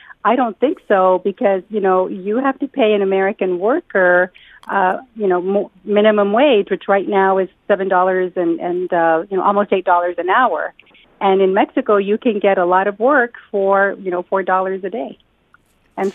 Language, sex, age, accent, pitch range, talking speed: English, female, 40-59, American, 185-210 Hz, 190 wpm